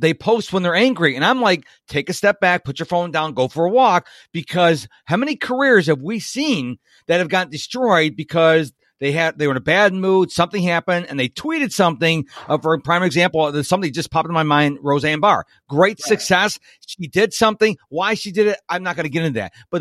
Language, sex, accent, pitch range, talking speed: English, male, American, 160-210 Hz, 230 wpm